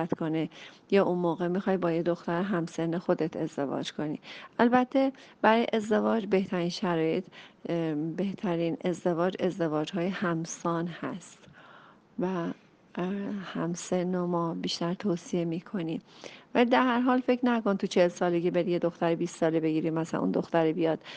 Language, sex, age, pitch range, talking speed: Persian, female, 40-59, 170-200 Hz, 145 wpm